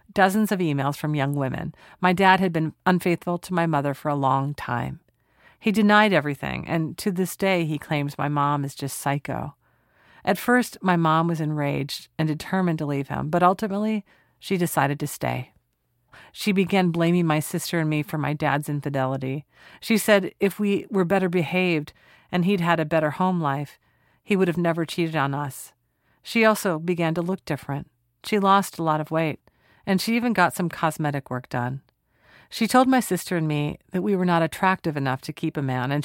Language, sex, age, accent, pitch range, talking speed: English, female, 40-59, American, 145-185 Hz, 195 wpm